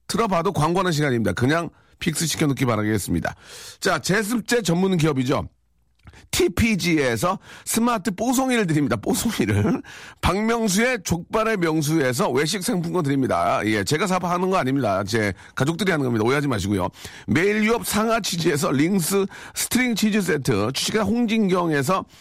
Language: Korean